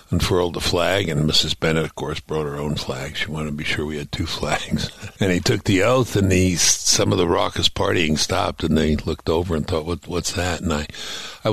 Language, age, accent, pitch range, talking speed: English, 60-79, American, 75-100 Hz, 240 wpm